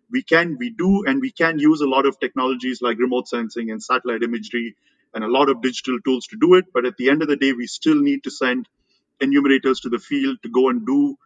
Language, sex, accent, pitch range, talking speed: English, male, Indian, 115-140 Hz, 250 wpm